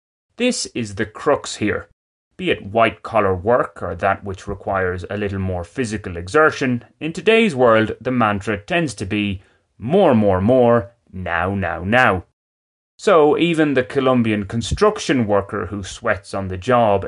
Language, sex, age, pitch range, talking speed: English, male, 30-49, 95-125 Hz, 150 wpm